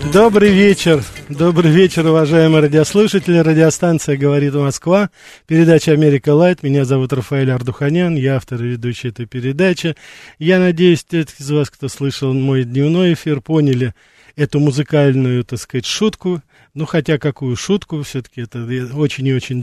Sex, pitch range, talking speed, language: male, 135-170 Hz, 145 wpm, Russian